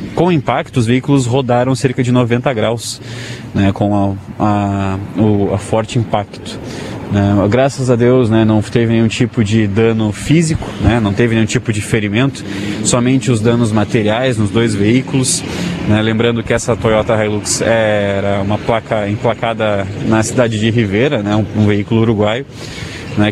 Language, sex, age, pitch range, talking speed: Portuguese, male, 20-39, 105-120 Hz, 150 wpm